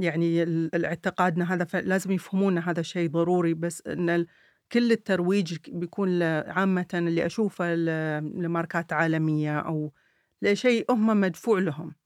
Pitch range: 170-200 Hz